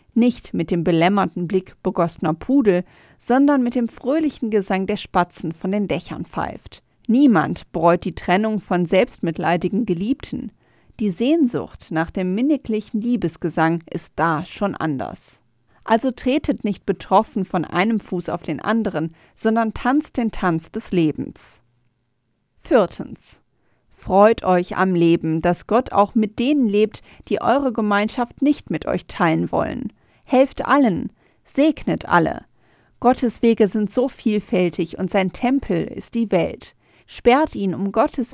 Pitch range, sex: 175-235 Hz, female